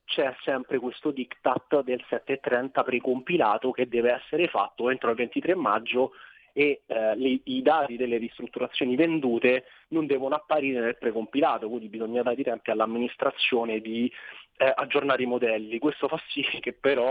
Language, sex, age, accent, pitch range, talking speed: Italian, male, 30-49, native, 125-155 Hz, 155 wpm